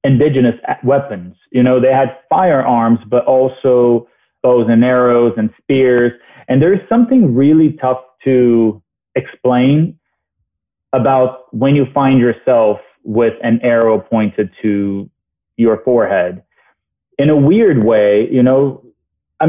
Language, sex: English, male